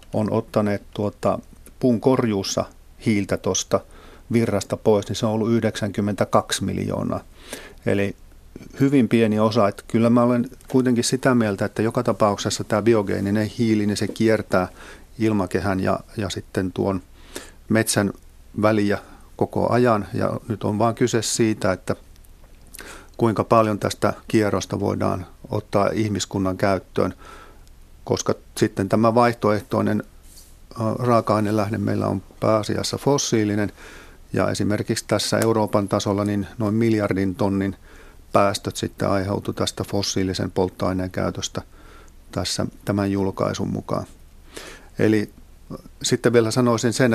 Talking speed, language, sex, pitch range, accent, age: 120 wpm, Finnish, male, 100-115 Hz, native, 50-69